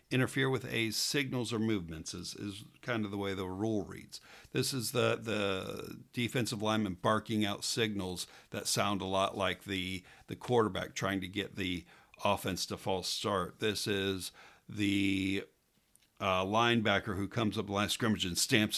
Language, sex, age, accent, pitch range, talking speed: English, male, 50-69, American, 95-115 Hz, 165 wpm